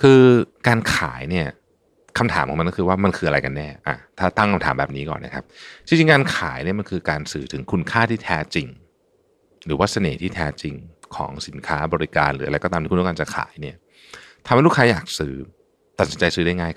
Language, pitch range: Thai, 75-115 Hz